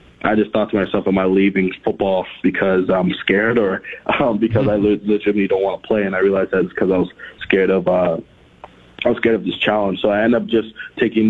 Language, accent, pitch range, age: English, American, 95-105 Hz, 20-39